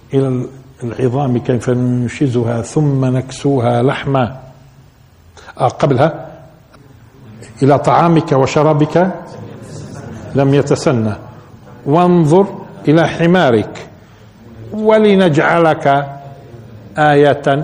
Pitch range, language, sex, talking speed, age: 120-150 Hz, Arabic, male, 60 wpm, 50-69